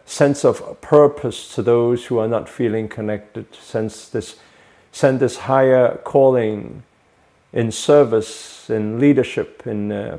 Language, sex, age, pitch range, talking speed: English, male, 40-59, 110-135 Hz, 120 wpm